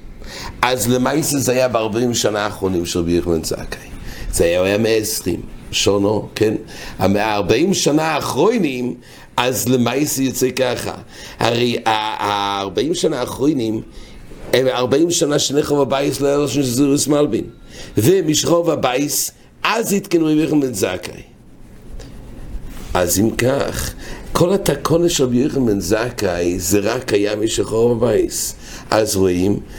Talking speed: 105 wpm